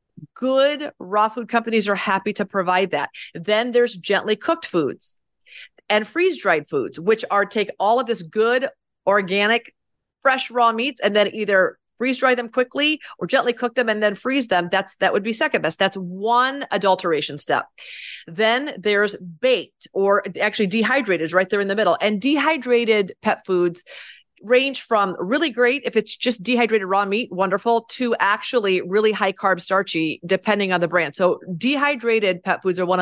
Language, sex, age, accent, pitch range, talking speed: English, female, 30-49, American, 190-245 Hz, 175 wpm